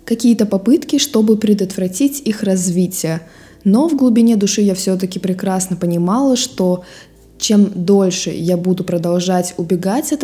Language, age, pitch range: Russian, 20-39, 180-210 Hz